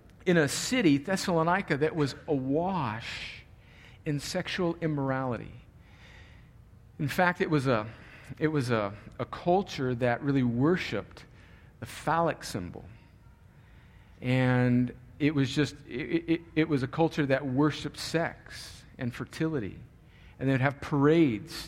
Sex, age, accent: male, 50-69, American